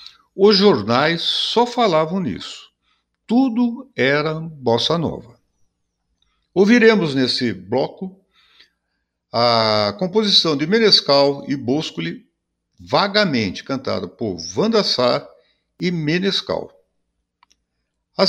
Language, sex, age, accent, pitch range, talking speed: Portuguese, male, 60-79, Brazilian, 120-195 Hz, 85 wpm